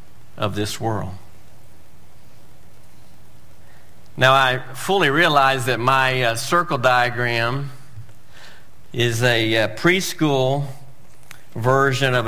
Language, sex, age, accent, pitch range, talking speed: English, male, 50-69, American, 115-135 Hz, 90 wpm